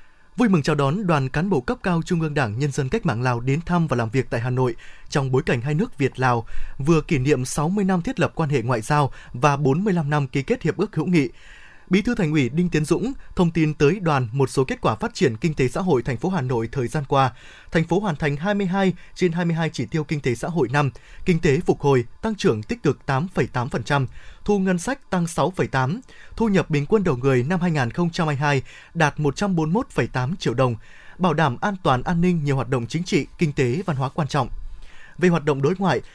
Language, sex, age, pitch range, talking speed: Vietnamese, male, 20-39, 135-175 Hz, 235 wpm